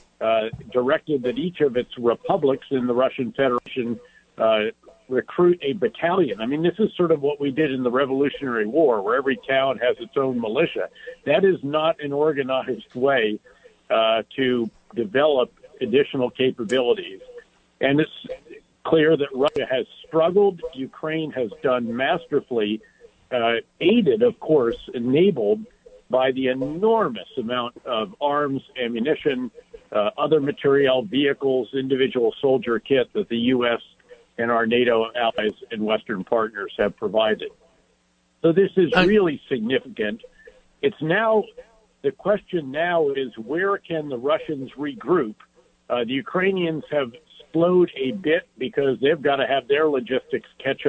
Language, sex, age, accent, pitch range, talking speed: English, male, 50-69, American, 125-190 Hz, 140 wpm